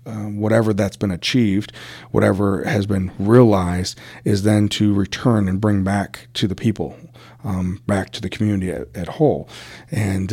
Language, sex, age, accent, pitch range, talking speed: English, male, 40-59, American, 95-115 Hz, 165 wpm